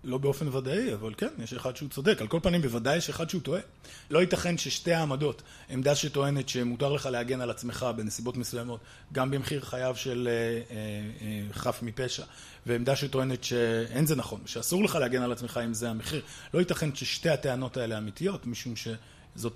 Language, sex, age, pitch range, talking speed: Hebrew, male, 30-49, 120-160 Hz, 180 wpm